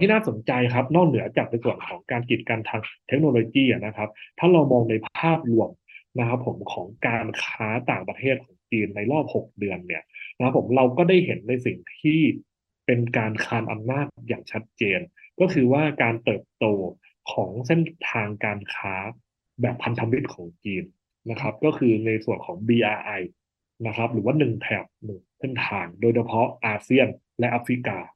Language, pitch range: English, 110-135 Hz